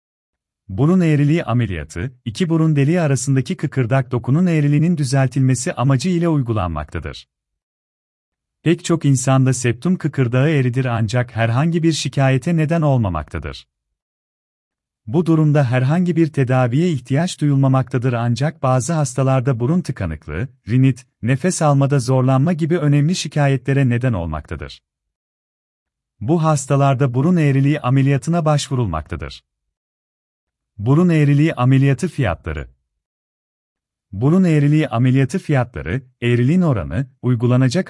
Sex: male